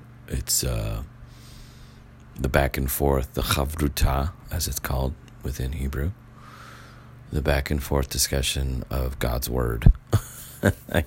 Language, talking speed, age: English, 120 wpm, 40-59